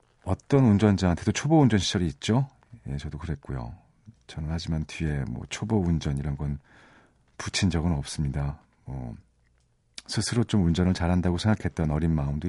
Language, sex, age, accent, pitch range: Korean, male, 40-59, native, 75-105 Hz